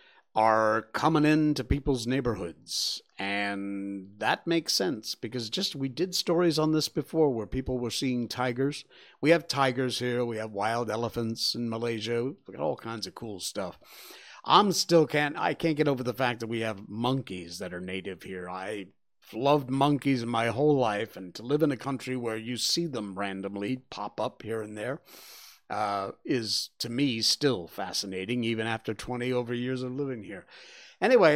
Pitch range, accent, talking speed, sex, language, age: 115-155 Hz, American, 180 wpm, male, English, 50-69